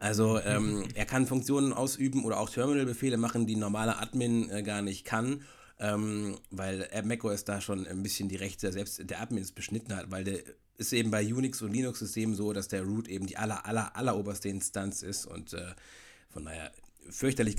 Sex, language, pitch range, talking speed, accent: male, German, 100-115 Hz, 200 wpm, German